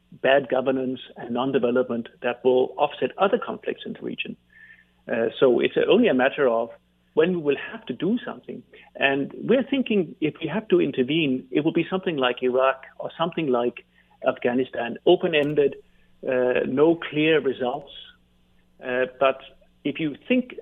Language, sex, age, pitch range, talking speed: English, male, 50-69, 125-160 Hz, 155 wpm